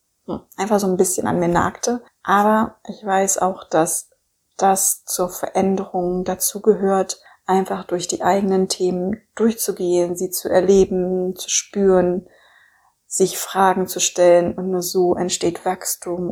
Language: German